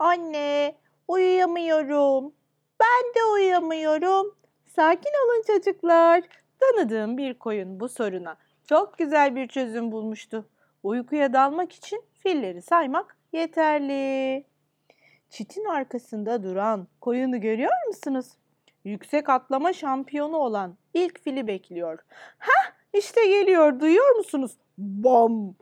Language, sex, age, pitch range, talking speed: Turkish, female, 30-49, 235-350 Hz, 100 wpm